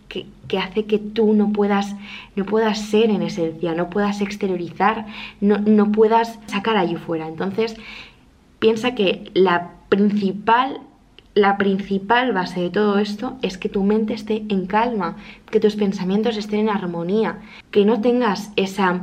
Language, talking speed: Spanish, 155 wpm